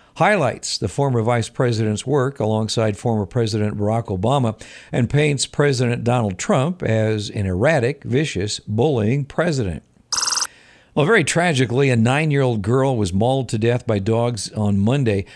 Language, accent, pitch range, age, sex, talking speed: English, American, 105-130 Hz, 50-69, male, 140 wpm